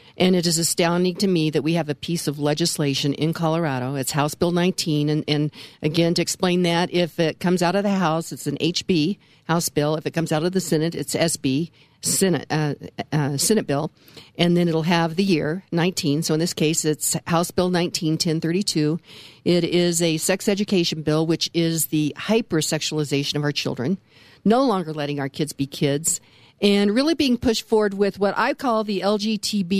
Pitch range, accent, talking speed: 155-195 Hz, American, 195 wpm